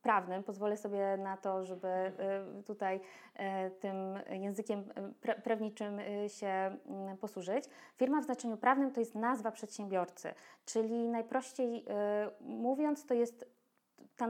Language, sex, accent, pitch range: Polish, female, native, 210-260 Hz